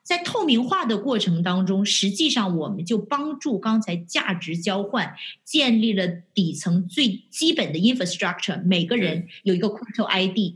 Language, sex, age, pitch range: Chinese, female, 30-49, 190-250 Hz